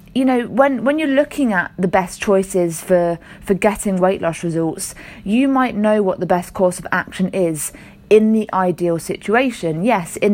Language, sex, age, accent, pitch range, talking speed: English, female, 30-49, British, 175-230 Hz, 185 wpm